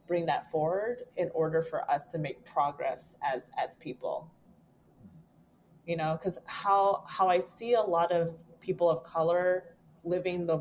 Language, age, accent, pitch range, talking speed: English, 30-49, American, 155-180 Hz, 160 wpm